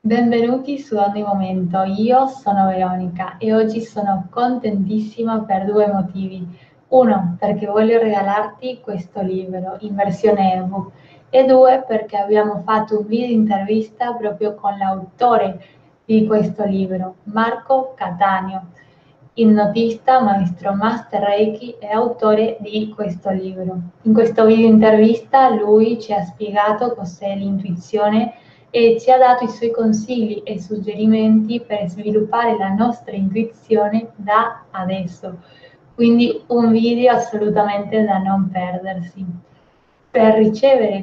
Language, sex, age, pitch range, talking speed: Italian, female, 10-29, 195-230 Hz, 125 wpm